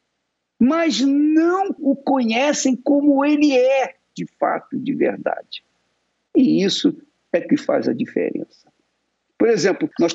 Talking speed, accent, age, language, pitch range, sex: 125 wpm, Brazilian, 60-79, Portuguese, 225-305 Hz, male